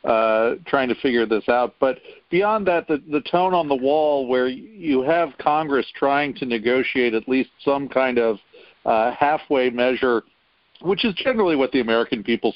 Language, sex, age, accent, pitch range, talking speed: English, male, 50-69, American, 120-145 Hz, 175 wpm